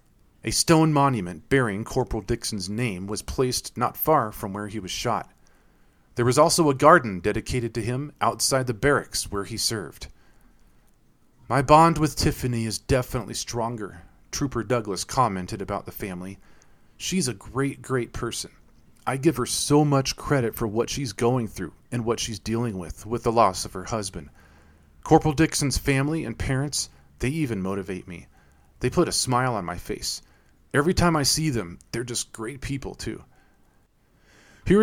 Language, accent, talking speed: English, American, 165 wpm